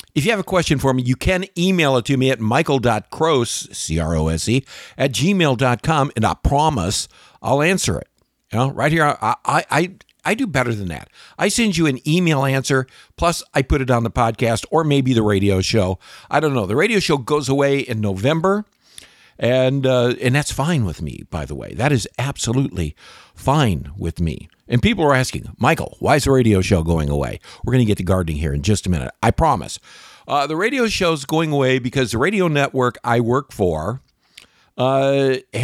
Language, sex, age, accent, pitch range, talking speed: English, male, 50-69, American, 110-150 Hz, 200 wpm